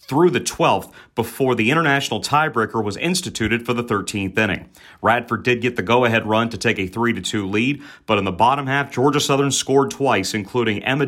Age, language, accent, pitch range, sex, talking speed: 40-59, English, American, 110-135 Hz, male, 190 wpm